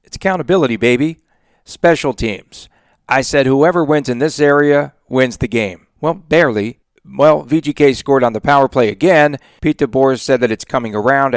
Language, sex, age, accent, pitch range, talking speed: English, male, 40-59, American, 115-135 Hz, 170 wpm